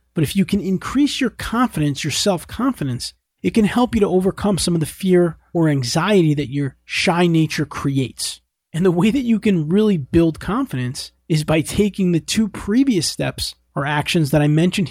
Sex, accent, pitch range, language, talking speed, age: male, American, 140-185 Hz, English, 190 wpm, 40-59